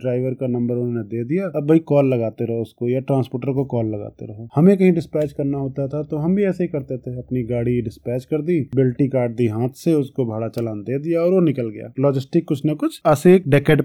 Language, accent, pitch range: Hindi, native, 125-155 Hz